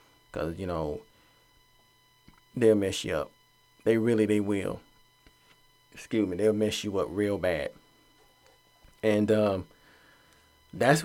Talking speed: 120 wpm